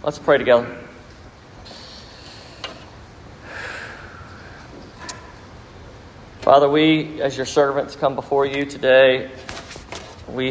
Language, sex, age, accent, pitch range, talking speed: English, male, 40-59, American, 110-145 Hz, 75 wpm